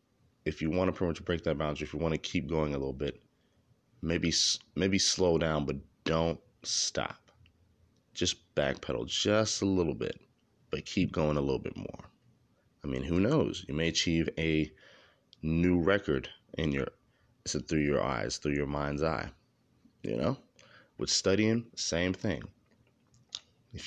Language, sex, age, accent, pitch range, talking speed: English, male, 30-49, American, 70-90 Hz, 160 wpm